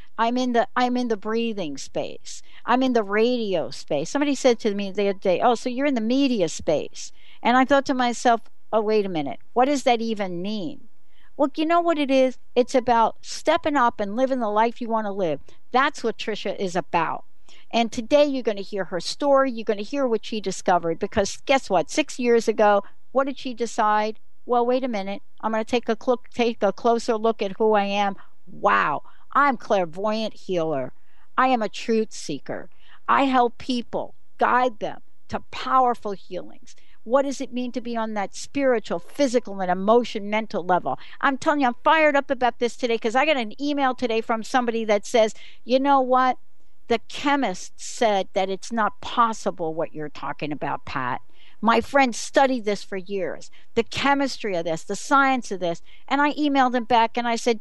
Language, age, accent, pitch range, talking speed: English, 60-79, American, 210-260 Hz, 200 wpm